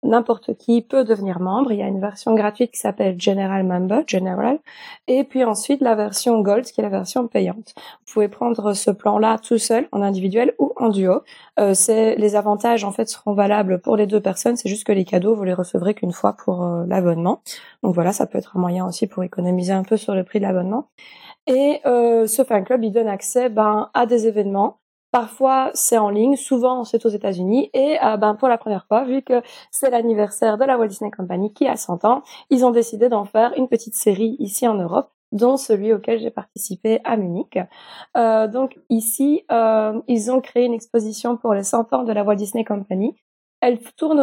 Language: French